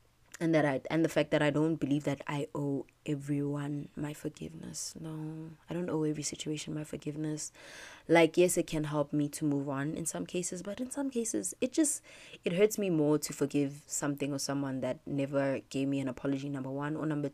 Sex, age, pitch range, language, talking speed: female, 20-39, 140-165 Hz, English, 210 wpm